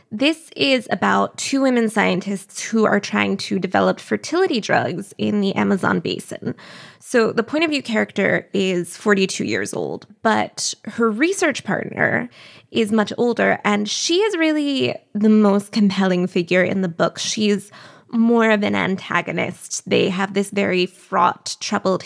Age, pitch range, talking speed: 20-39, 190-240 Hz, 150 wpm